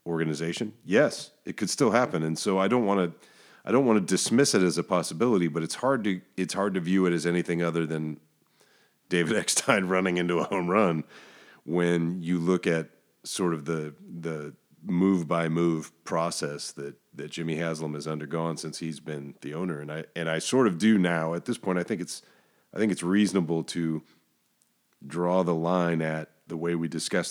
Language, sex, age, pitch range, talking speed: English, male, 40-59, 80-90 Hz, 200 wpm